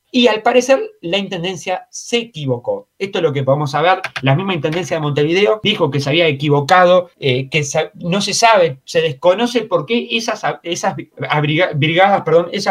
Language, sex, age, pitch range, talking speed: Spanish, male, 30-49, 150-195 Hz, 160 wpm